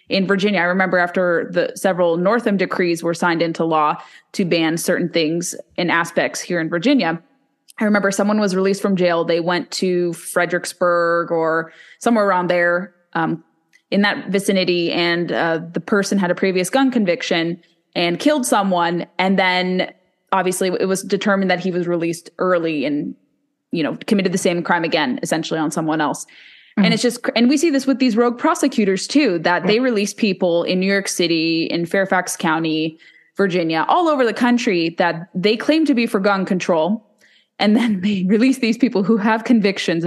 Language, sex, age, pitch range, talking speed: English, female, 20-39, 175-220 Hz, 180 wpm